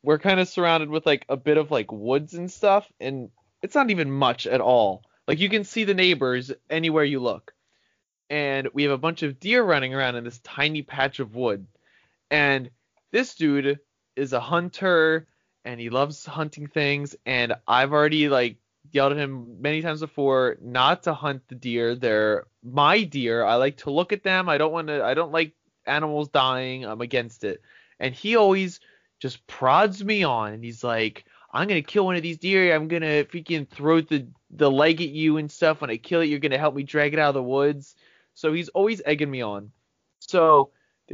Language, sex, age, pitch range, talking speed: English, male, 20-39, 125-160 Hz, 205 wpm